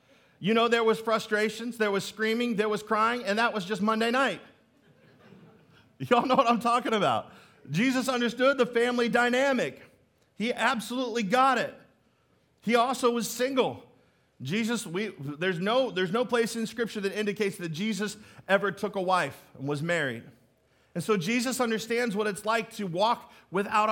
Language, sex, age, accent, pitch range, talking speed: English, male, 40-59, American, 170-235 Hz, 165 wpm